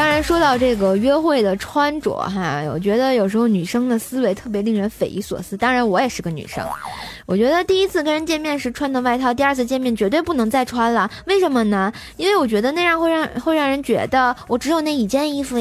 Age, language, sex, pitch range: 20-39, Chinese, female, 210-275 Hz